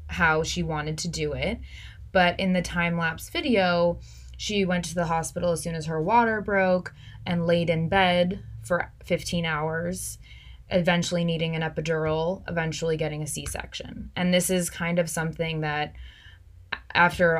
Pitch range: 155-175 Hz